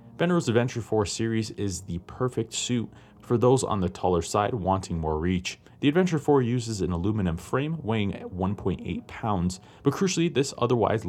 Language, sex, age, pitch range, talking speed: English, male, 30-49, 90-120 Hz, 175 wpm